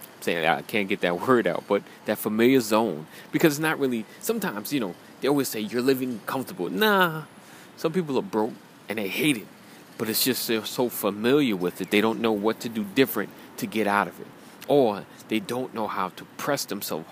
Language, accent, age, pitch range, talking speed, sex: English, American, 30-49, 100-125 Hz, 215 wpm, male